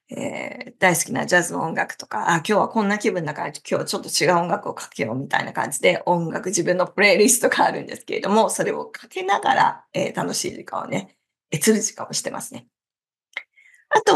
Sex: female